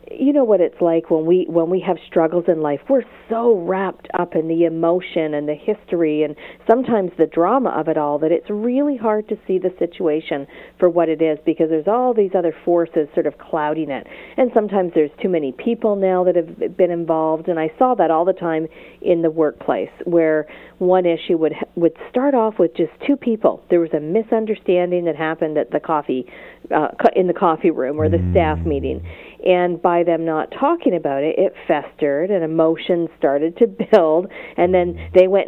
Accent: American